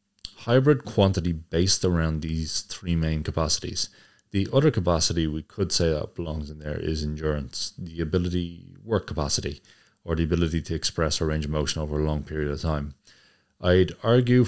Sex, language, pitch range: male, English, 80-100 Hz